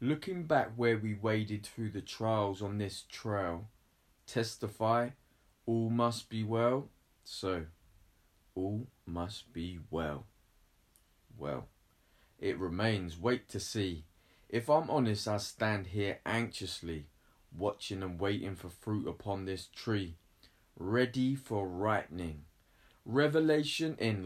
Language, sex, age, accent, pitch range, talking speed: English, male, 20-39, British, 90-115 Hz, 115 wpm